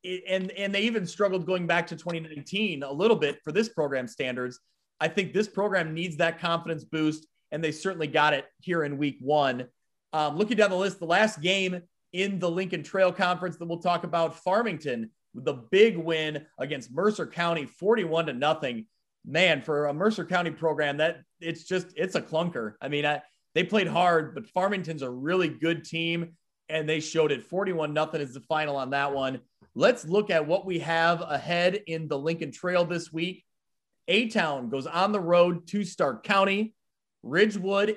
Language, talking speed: English, 185 wpm